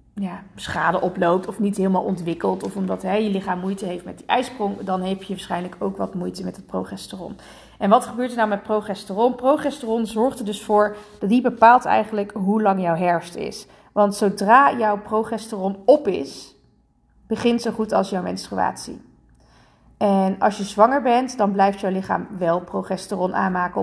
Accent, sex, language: Dutch, female, Dutch